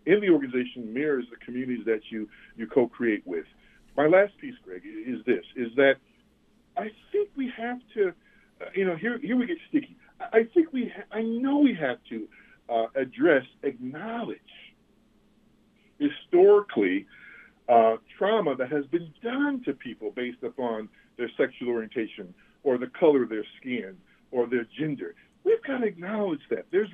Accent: American